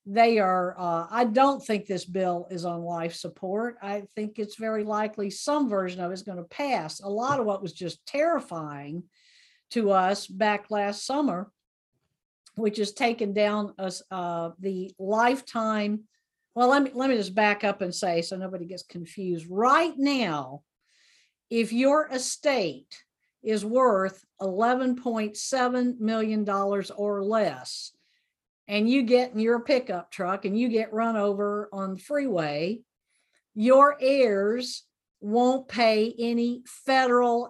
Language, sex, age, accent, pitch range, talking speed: English, female, 50-69, American, 195-245 Hz, 145 wpm